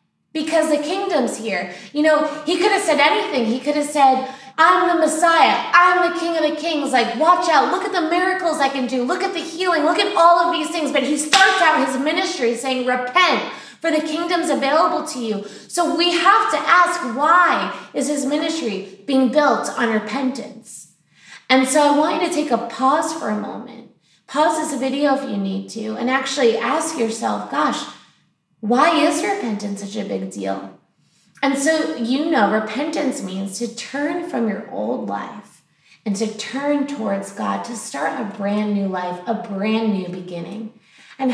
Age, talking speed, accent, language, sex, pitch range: 20-39, 190 wpm, American, English, female, 220-310 Hz